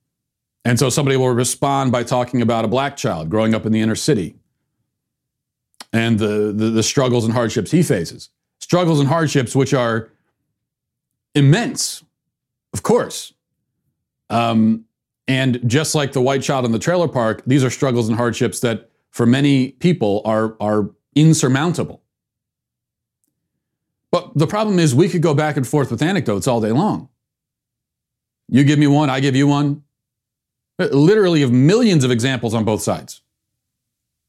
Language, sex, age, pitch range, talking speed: English, male, 40-59, 110-140 Hz, 155 wpm